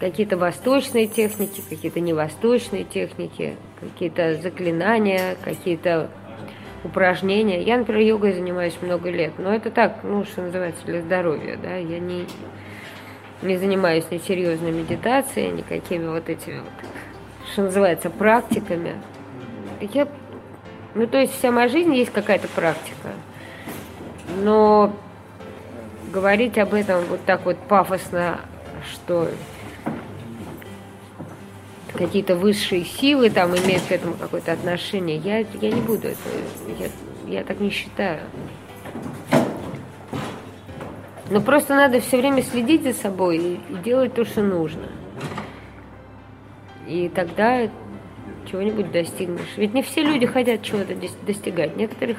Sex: female